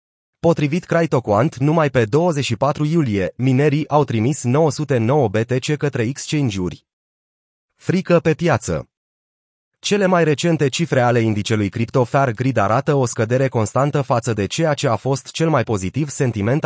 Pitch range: 120-150 Hz